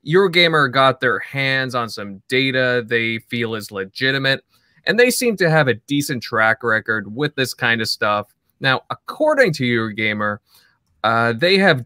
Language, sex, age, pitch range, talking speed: English, male, 20-39, 115-155 Hz, 160 wpm